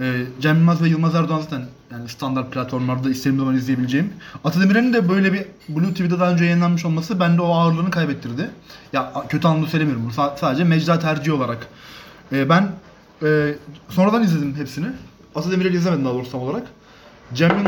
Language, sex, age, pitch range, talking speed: Turkish, male, 30-49, 135-180 Hz, 165 wpm